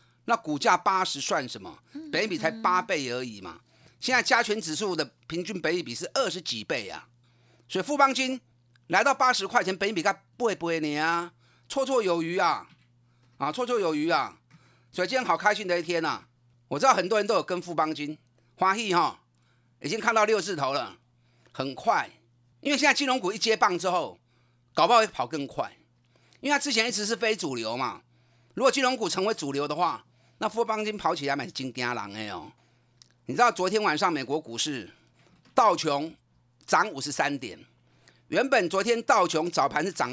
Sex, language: male, Chinese